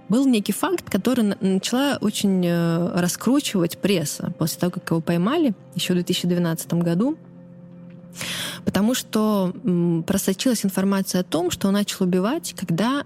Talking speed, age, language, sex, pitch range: 130 wpm, 20-39, Russian, female, 170-205 Hz